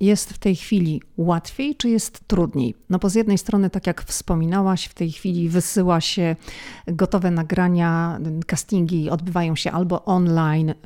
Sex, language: female, Polish